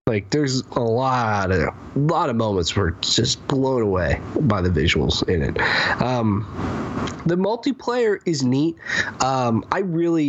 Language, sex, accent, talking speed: English, male, American, 150 wpm